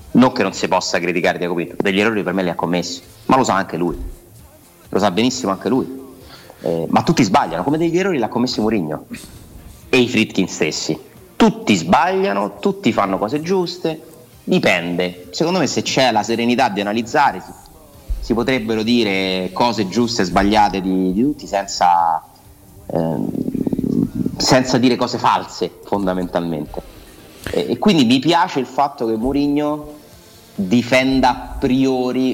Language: Italian